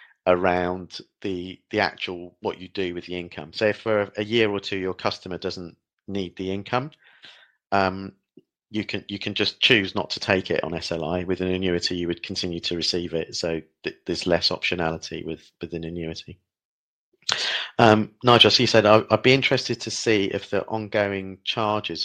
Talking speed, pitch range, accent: 190 wpm, 90-115 Hz, British